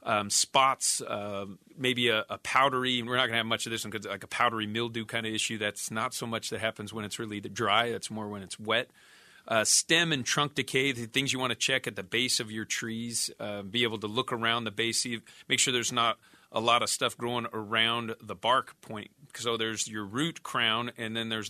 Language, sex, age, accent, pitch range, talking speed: English, male, 40-59, American, 110-125 Hz, 235 wpm